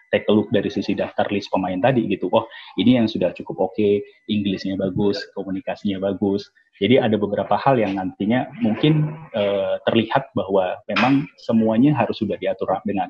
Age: 30-49